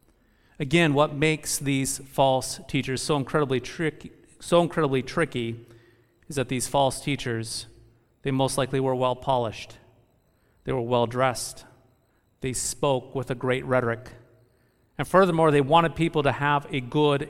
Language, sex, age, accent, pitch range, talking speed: English, male, 40-59, American, 120-145 Hz, 130 wpm